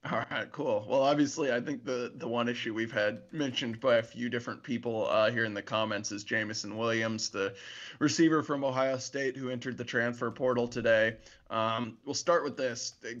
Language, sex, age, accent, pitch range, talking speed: English, male, 20-39, American, 115-140 Hz, 200 wpm